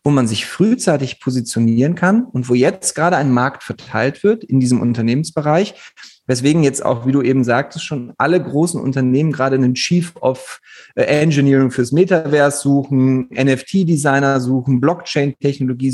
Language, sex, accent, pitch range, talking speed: German, male, German, 135-185 Hz, 145 wpm